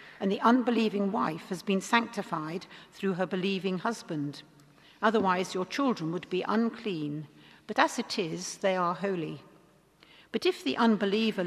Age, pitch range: 60-79, 175-215 Hz